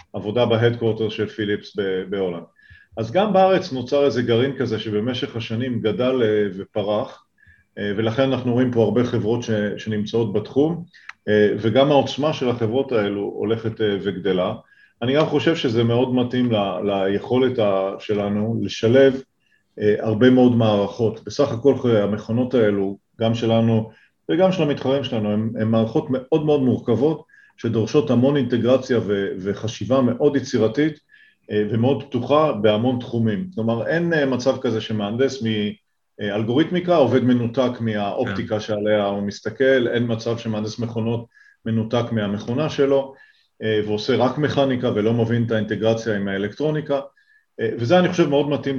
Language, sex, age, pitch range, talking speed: Hebrew, male, 40-59, 105-135 Hz, 125 wpm